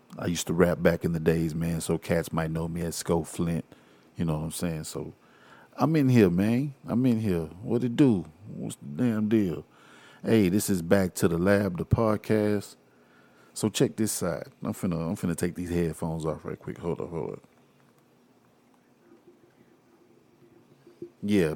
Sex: male